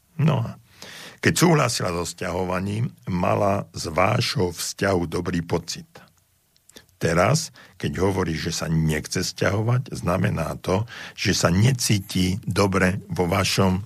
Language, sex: Slovak, male